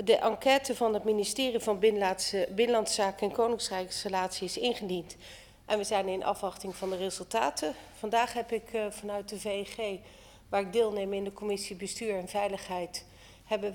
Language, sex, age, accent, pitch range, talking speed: Dutch, female, 40-59, Dutch, 185-220 Hz, 165 wpm